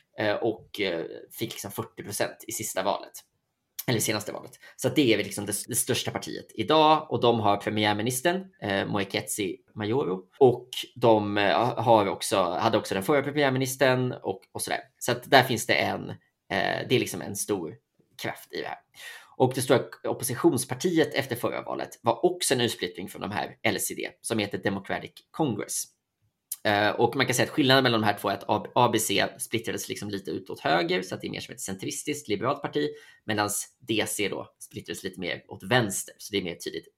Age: 20-39